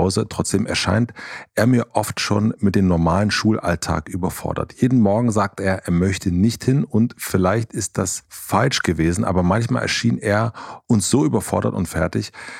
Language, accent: German, German